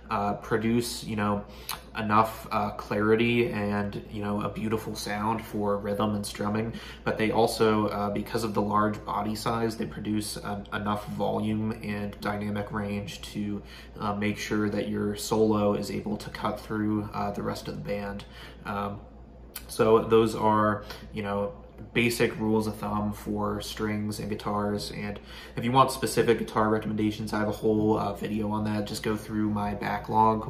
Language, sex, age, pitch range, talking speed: English, male, 20-39, 105-110 Hz, 170 wpm